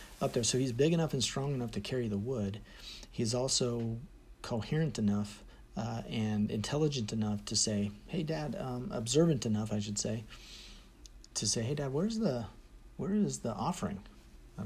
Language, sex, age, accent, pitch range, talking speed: English, male, 40-59, American, 100-125 Hz, 170 wpm